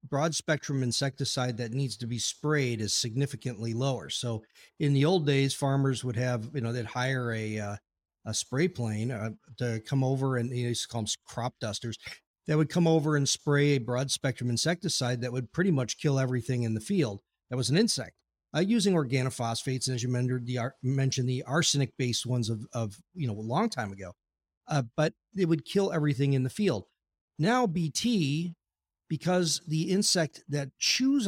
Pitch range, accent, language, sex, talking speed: 120-155 Hz, American, English, male, 195 wpm